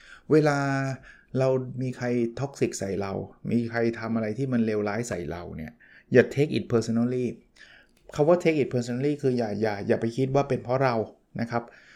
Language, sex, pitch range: Thai, male, 120-145 Hz